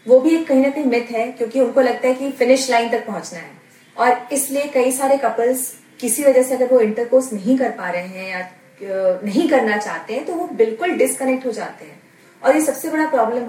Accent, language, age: native, Hindi, 30-49